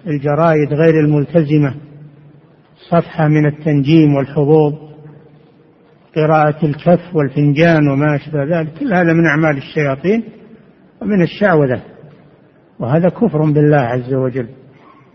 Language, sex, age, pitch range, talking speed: Arabic, male, 60-79, 150-180 Hz, 100 wpm